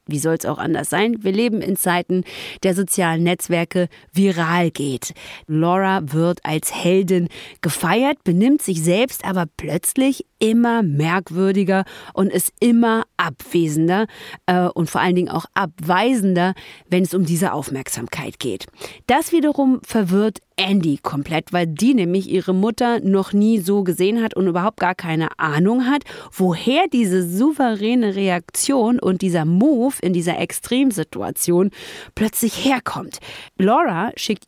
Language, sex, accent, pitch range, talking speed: German, female, German, 175-225 Hz, 135 wpm